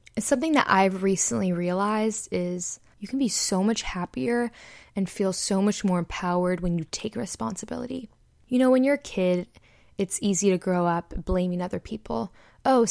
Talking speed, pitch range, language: 175 wpm, 180-230 Hz, English